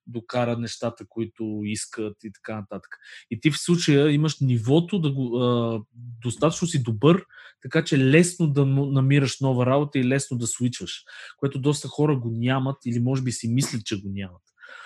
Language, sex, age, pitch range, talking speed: Bulgarian, male, 20-39, 120-155 Hz, 175 wpm